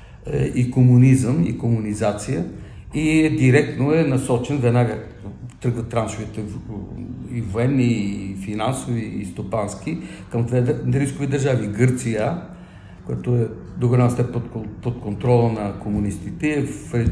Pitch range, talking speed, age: 115-155 Hz, 120 wpm, 50-69